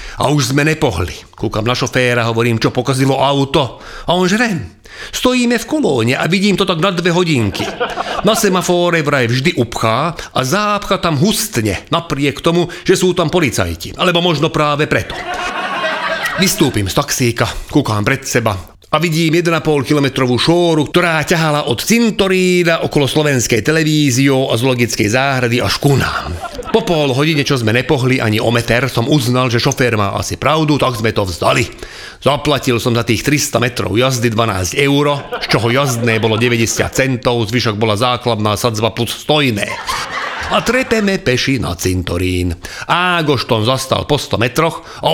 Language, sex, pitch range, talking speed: Slovak, male, 120-170 Hz, 160 wpm